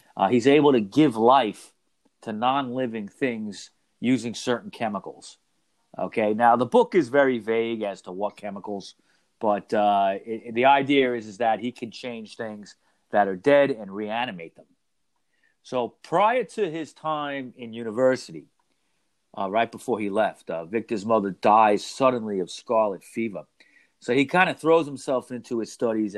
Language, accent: English, American